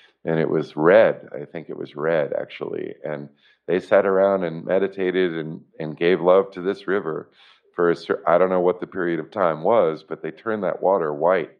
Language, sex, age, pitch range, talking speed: English, male, 50-69, 80-90 Hz, 200 wpm